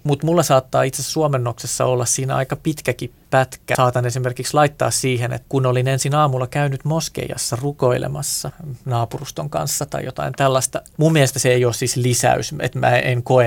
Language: Finnish